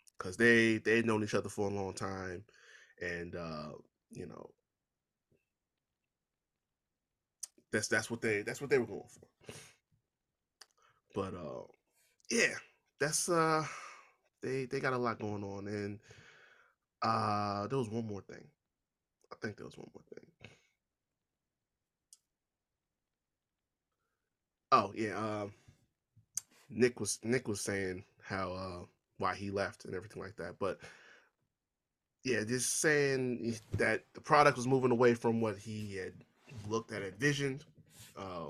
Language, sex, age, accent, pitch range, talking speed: English, male, 20-39, American, 100-120 Hz, 135 wpm